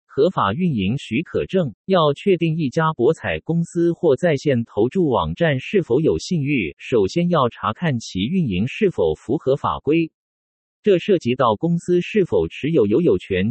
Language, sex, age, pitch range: Chinese, male, 50-69, 115-180 Hz